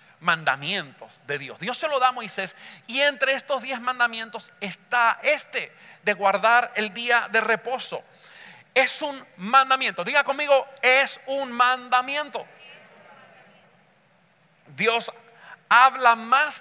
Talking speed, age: 120 wpm, 40-59